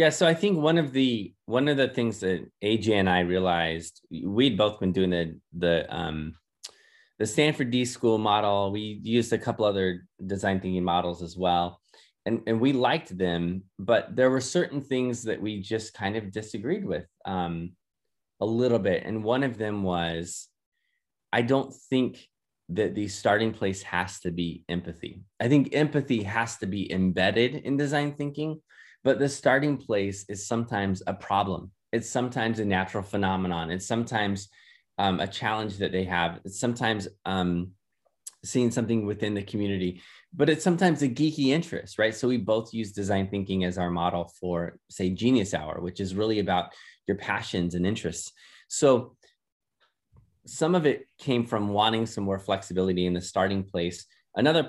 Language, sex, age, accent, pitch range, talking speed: English, male, 20-39, American, 90-120 Hz, 170 wpm